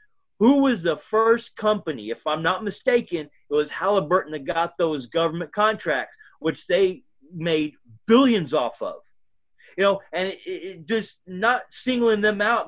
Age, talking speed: 30-49, 145 wpm